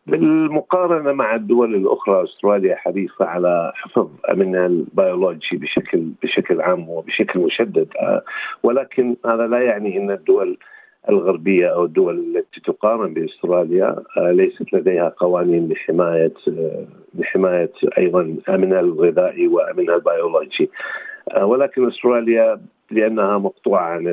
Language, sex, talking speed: Arabic, male, 105 wpm